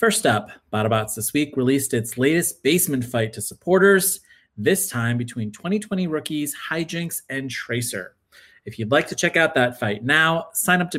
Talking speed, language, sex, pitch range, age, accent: 175 wpm, English, male, 115-145 Hz, 30-49, American